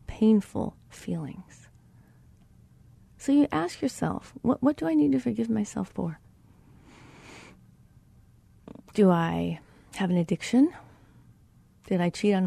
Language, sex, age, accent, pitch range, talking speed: English, female, 30-49, American, 175-220 Hz, 115 wpm